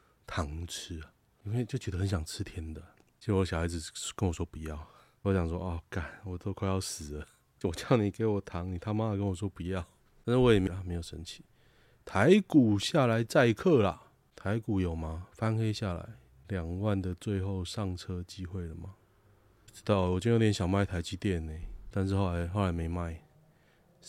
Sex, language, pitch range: male, Chinese, 90-110 Hz